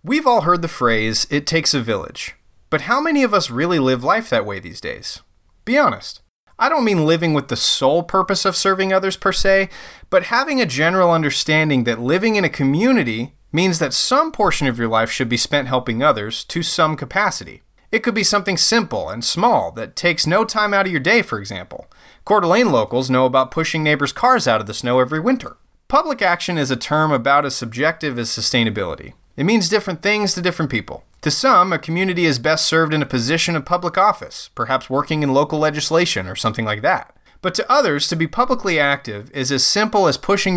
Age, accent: 30-49, American